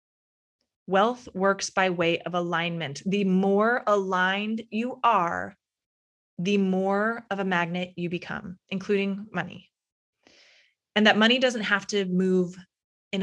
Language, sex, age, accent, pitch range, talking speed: English, female, 20-39, American, 185-215 Hz, 125 wpm